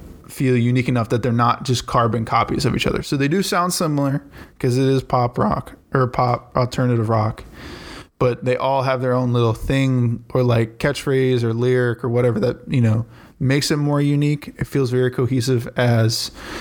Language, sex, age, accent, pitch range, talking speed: English, male, 20-39, American, 120-130 Hz, 190 wpm